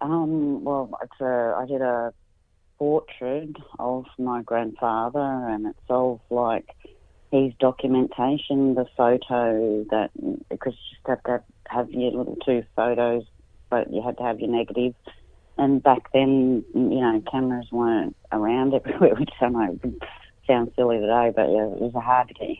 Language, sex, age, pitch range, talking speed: English, female, 40-59, 115-125 Hz, 150 wpm